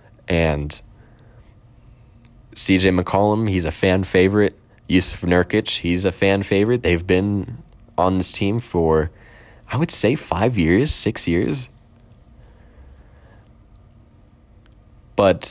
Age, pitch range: 20-39, 90-110 Hz